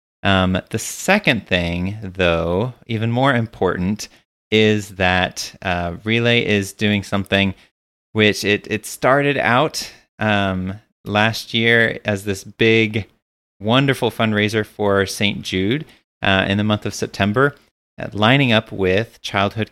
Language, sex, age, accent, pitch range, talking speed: English, male, 30-49, American, 100-115 Hz, 130 wpm